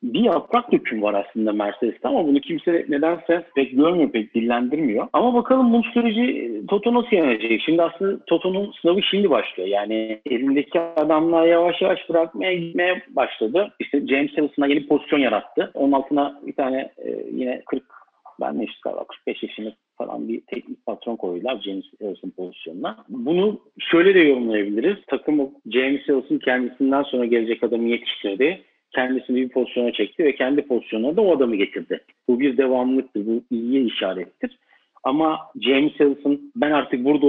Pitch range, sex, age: 125-175 Hz, male, 50-69